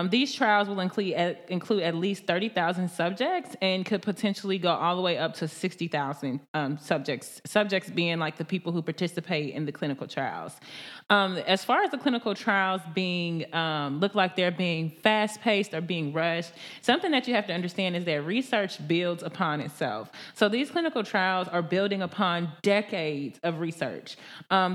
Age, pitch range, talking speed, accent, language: 20-39, 170-205 Hz, 175 wpm, American, English